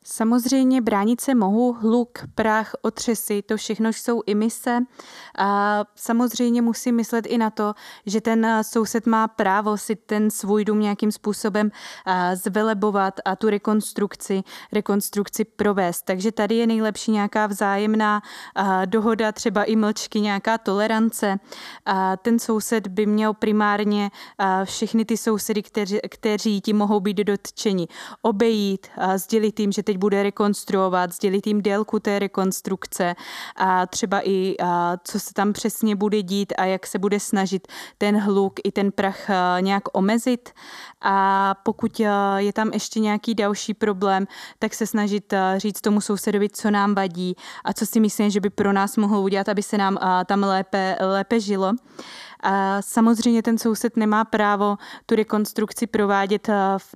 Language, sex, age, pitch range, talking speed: Czech, female, 20-39, 195-220 Hz, 145 wpm